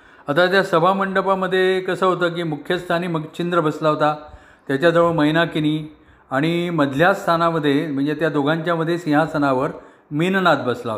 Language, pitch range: Marathi, 145-185 Hz